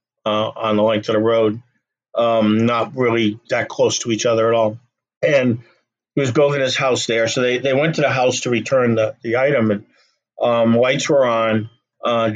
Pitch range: 110-125 Hz